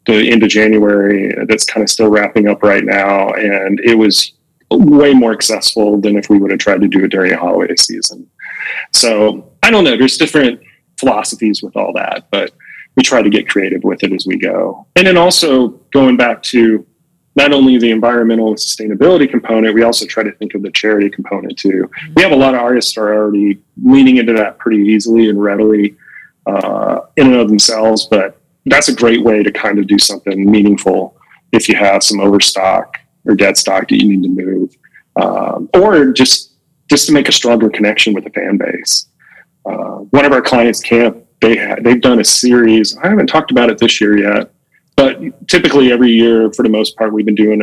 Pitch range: 105-120 Hz